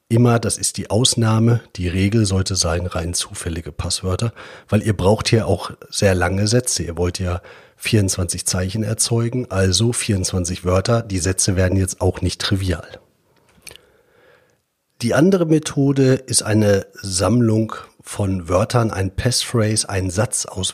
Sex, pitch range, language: male, 95-120 Hz, German